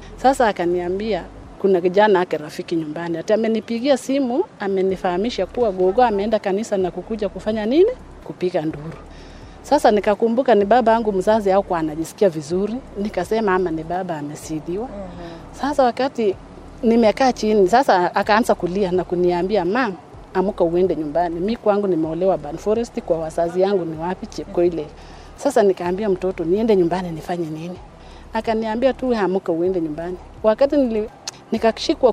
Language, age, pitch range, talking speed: Swahili, 40-59, 175-225 Hz, 135 wpm